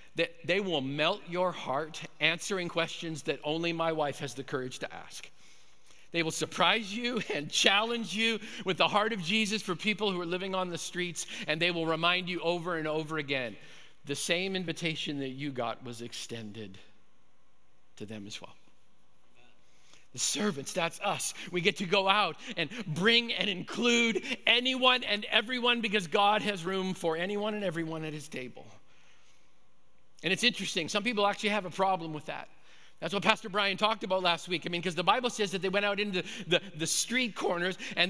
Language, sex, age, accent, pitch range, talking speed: English, male, 50-69, American, 155-210 Hz, 190 wpm